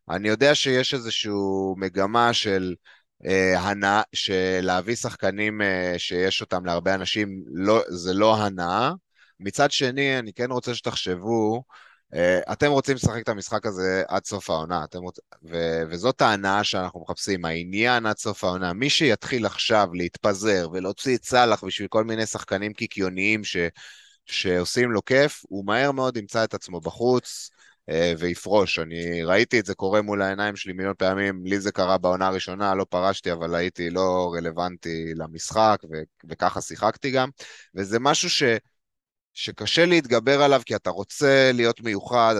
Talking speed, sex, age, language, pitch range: 150 wpm, male, 30-49, Hebrew, 90-120 Hz